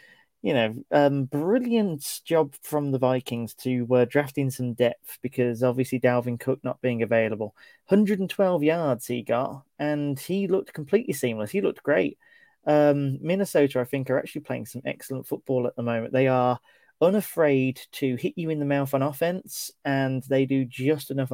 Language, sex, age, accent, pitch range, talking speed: English, male, 20-39, British, 125-150 Hz, 170 wpm